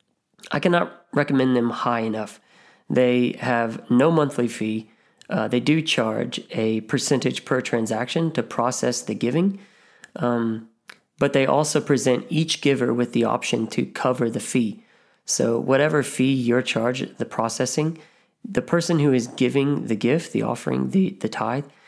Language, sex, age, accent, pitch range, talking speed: English, male, 30-49, American, 115-140 Hz, 155 wpm